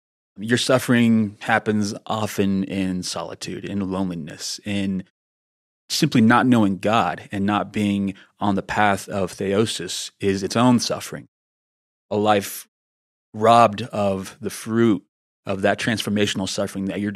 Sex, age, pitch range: male, 30-49, 95-115 Hz